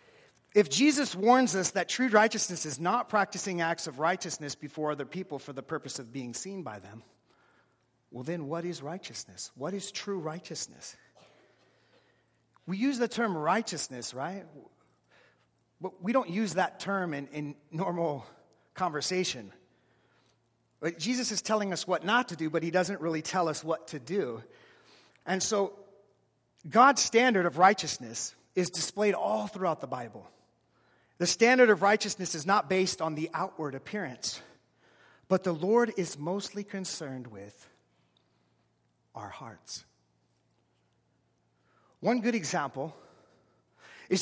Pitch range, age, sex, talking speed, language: 145-200 Hz, 40-59, male, 140 wpm, English